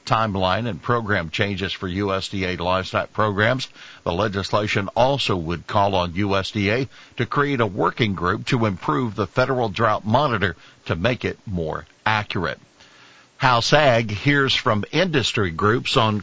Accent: American